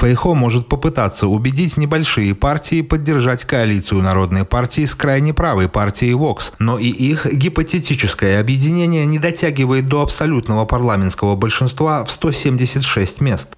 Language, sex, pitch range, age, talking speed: Russian, male, 110-155 Hz, 30-49, 130 wpm